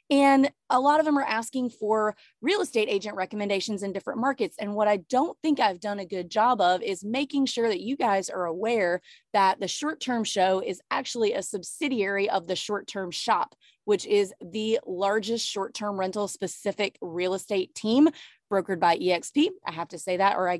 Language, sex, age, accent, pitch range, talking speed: English, female, 30-49, American, 195-245 Hz, 190 wpm